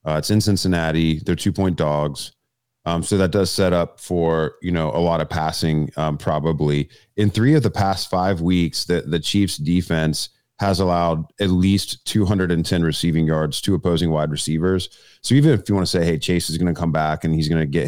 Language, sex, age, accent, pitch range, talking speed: English, male, 30-49, American, 80-95 Hz, 215 wpm